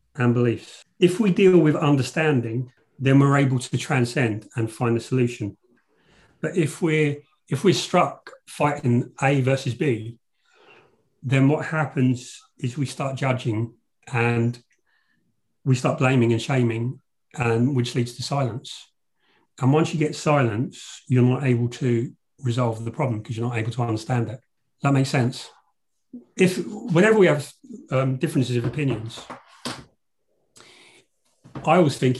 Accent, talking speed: British, 140 wpm